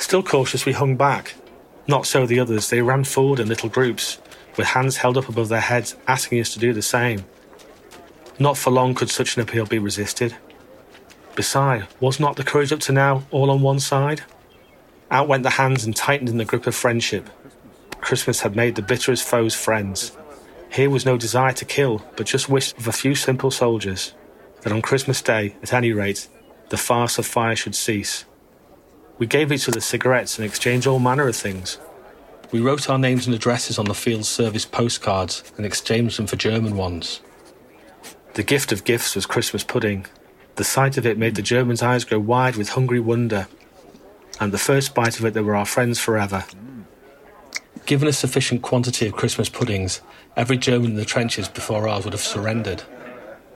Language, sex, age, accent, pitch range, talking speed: English, male, 40-59, British, 110-135 Hz, 190 wpm